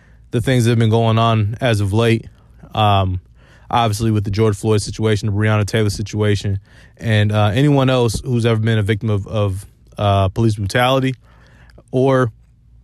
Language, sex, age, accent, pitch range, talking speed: English, male, 20-39, American, 105-120 Hz, 170 wpm